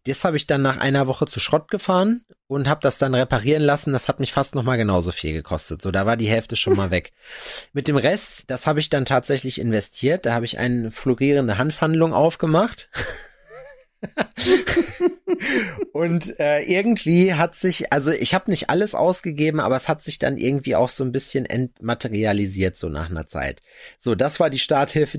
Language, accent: German, German